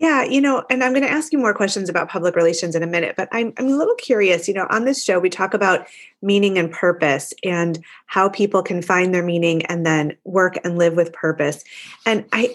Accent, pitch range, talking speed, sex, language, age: American, 180-245 Hz, 240 wpm, female, English, 30-49